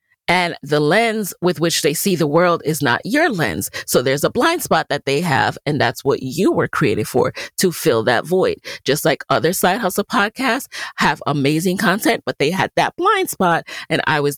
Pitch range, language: 160-225 Hz, English